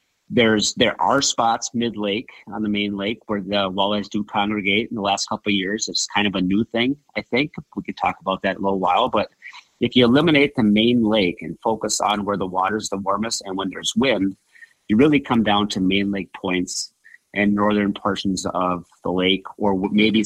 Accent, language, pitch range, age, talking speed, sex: American, English, 95-110 Hz, 30-49, 215 wpm, male